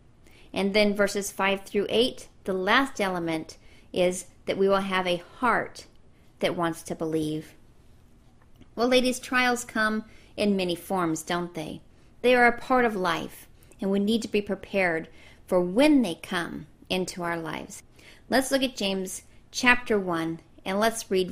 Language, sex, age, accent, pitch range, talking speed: English, female, 40-59, American, 175-235 Hz, 160 wpm